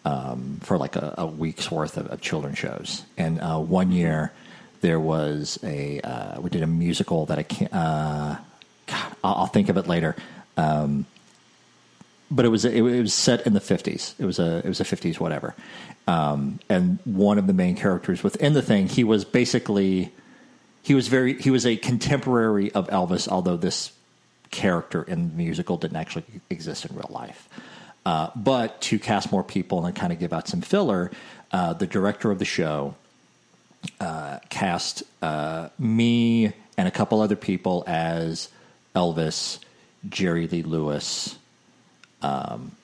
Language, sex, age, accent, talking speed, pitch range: English, male, 40-59, American, 170 wpm, 80-125 Hz